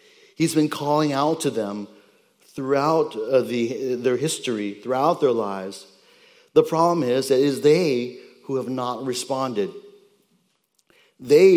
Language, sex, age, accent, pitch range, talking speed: English, male, 50-69, American, 105-150 Hz, 130 wpm